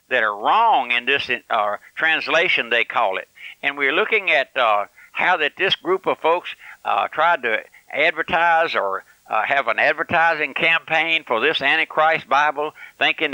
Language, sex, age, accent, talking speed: English, male, 60-79, American, 160 wpm